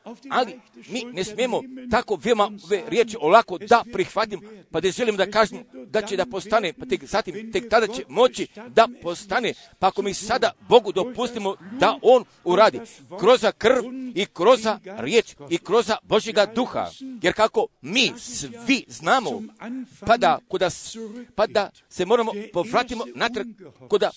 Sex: male